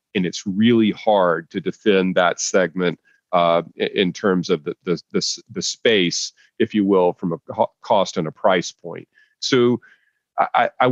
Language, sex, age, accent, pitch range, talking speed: English, male, 40-59, American, 95-115 Hz, 165 wpm